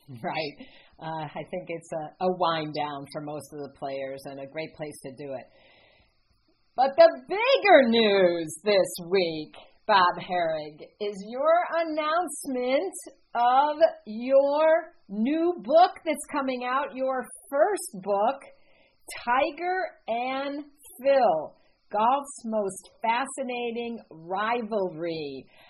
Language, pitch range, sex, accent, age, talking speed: English, 180-270 Hz, female, American, 50-69, 115 wpm